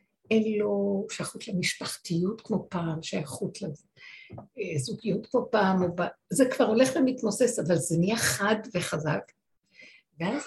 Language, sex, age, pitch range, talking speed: Hebrew, female, 60-79, 200-260 Hz, 125 wpm